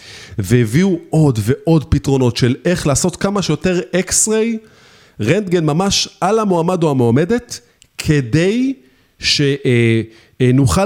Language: Hebrew